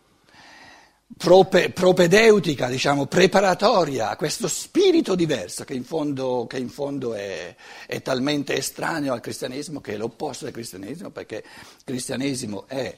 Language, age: Italian, 60-79